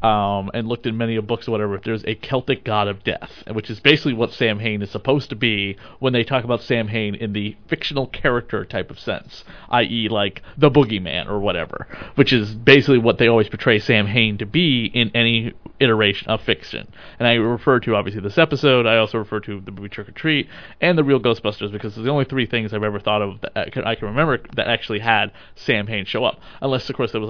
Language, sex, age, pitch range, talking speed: English, male, 30-49, 105-130 Hz, 235 wpm